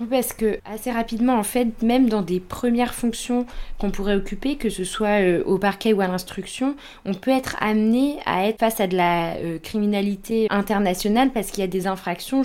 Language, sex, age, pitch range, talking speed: French, female, 20-39, 180-220 Hz, 195 wpm